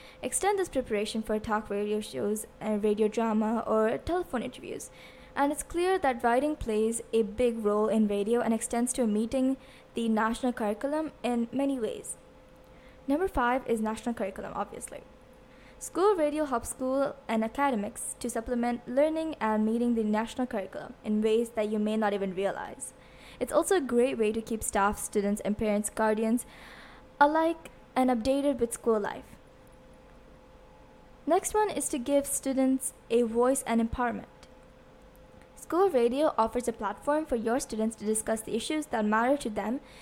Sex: female